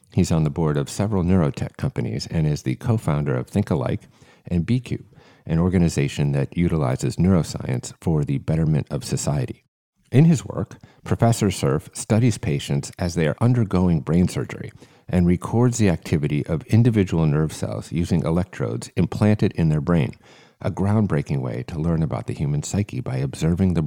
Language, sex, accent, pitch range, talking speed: English, male, American, 85-115 Hz, 165 wpm